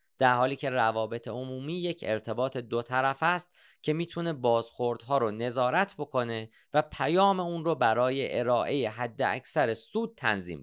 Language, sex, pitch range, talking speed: Persian, male, 110-145 Hz, 145 wpm